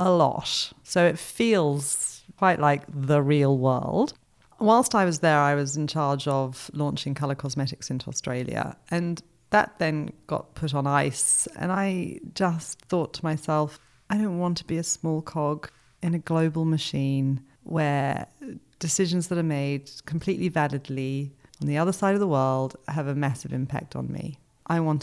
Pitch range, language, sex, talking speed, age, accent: 135-165 Hz, English, female, 170 wpm, 30-49, British